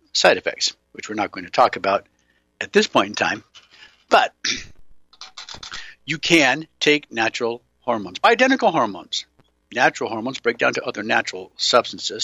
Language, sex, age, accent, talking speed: English, male, 60-79, American, 145 wpm